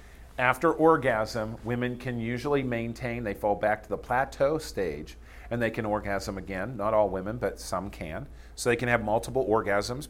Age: 40-59